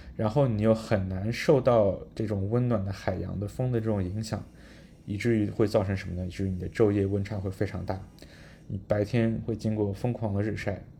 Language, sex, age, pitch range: Chinese, male, 20-39, 95-115 Hz